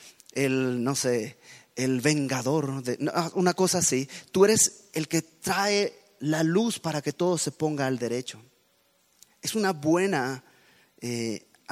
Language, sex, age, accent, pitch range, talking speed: Spanish, male, 30-49, Mexican, 135-165 Hz, 135 wpm